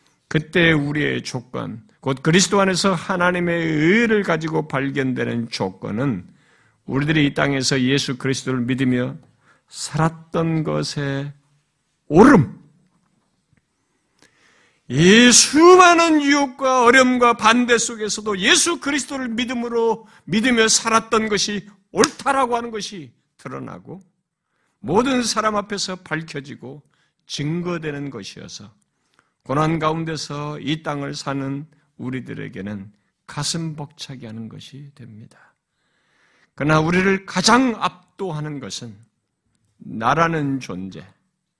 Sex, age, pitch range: male, 50-69, 140-200 Hz